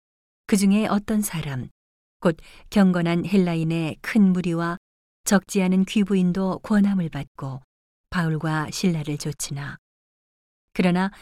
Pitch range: 155-200 Hz